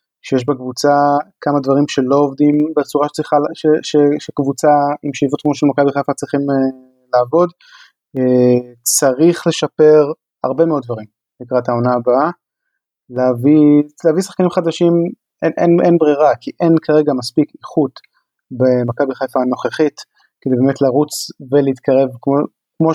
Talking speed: 135 wpm